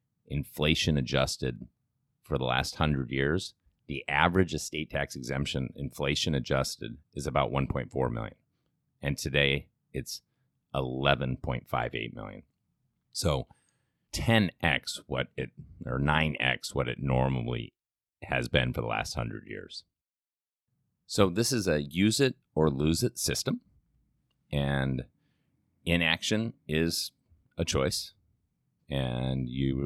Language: English